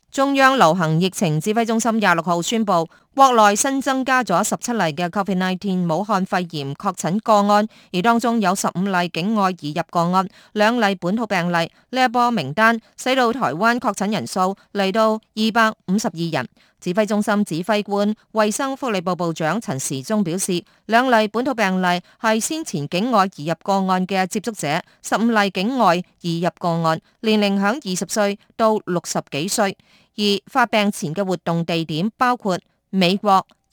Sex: female